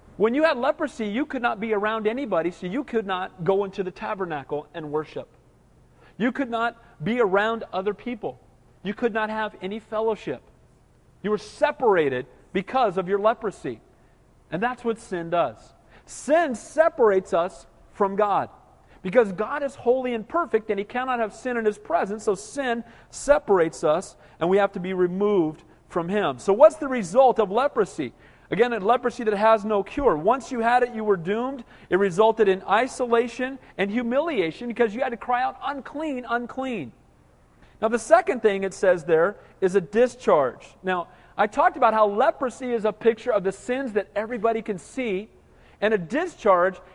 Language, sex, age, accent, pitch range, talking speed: English, male, 40-59, American, 190-245 Hz, 180 wpm